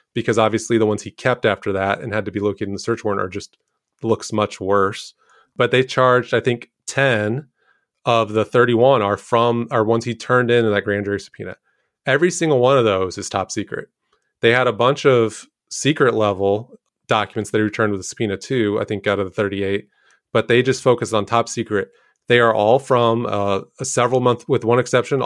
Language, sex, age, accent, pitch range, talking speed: English, male, 30-49, American, 105-120 Hz, 210 wpm